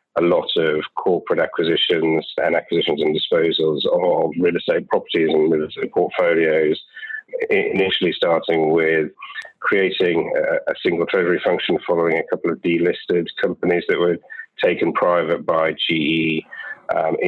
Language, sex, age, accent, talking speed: English, male, 40-59, British, 135 wpm